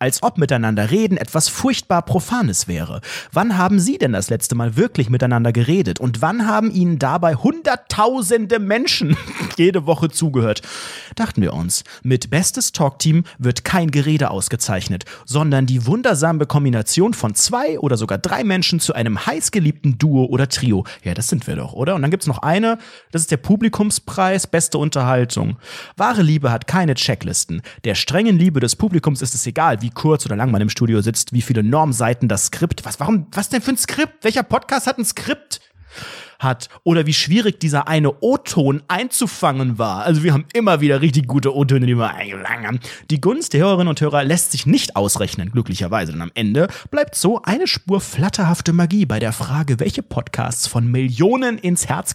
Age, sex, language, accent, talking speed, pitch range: 30-49, male, German, German, 185 wpm, 120-190 Hz